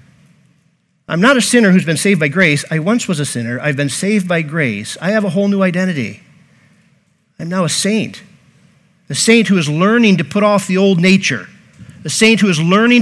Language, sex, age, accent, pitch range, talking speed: English, male, 50-69, American, 160-215 Hz, 205 wpm